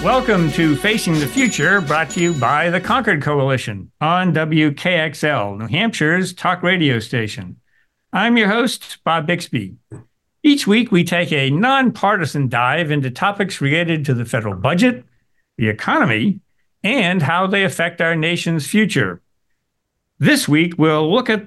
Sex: male